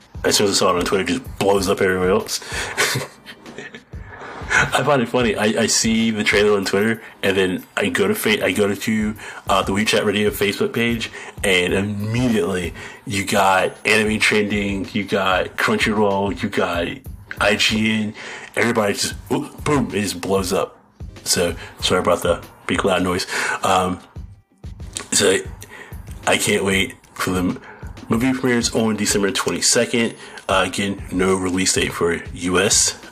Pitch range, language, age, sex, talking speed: 100-115 Hz, English, 30-49, male, 155 wpm